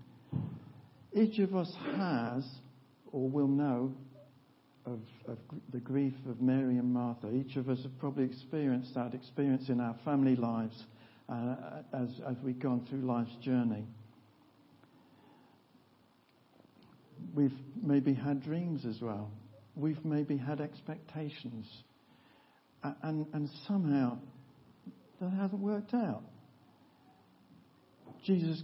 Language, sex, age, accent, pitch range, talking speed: English, male, 60-79, British, 125-175 Hz, 110 wpm